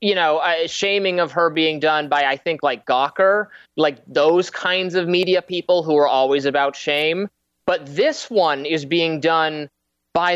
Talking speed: 175 wpm